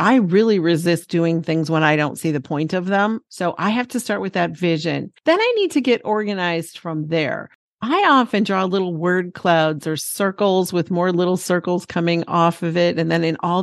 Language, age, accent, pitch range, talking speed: English, 40-59, American, 165-205 Hz, 215 wpm